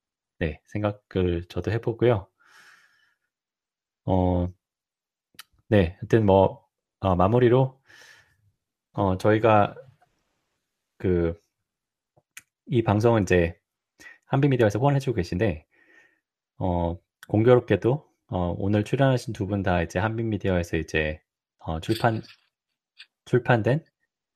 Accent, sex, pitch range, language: native, male, 90-115 Hz, Korean